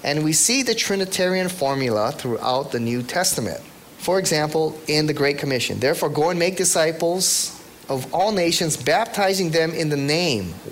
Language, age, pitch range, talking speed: English, 30-49, 130-180 Hz, 160 wpm